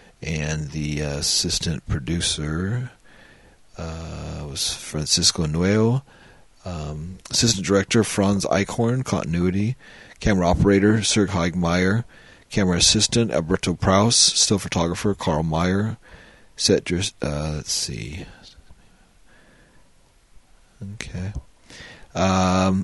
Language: English